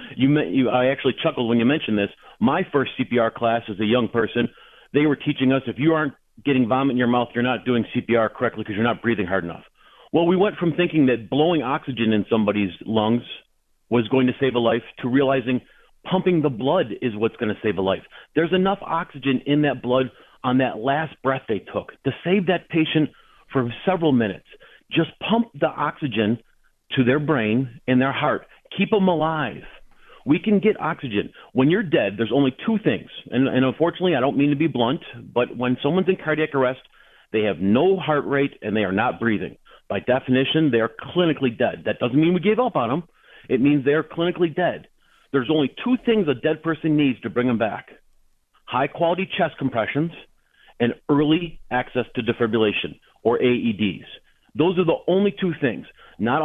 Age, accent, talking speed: 40-59, American, 195 wpm